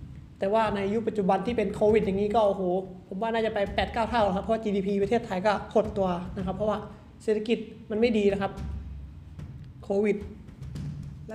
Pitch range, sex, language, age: 195-225 Hz, male, Thai, 20-39